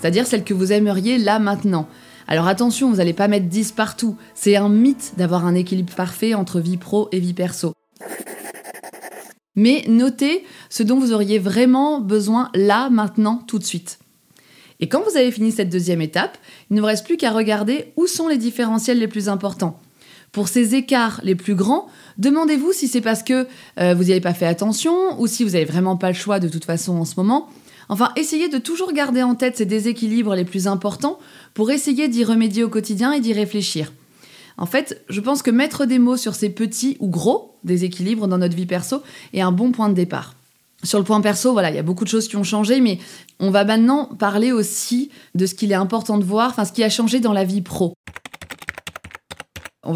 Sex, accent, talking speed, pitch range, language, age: female, French, 215 wpm, 190-250 Hz, French, 20-39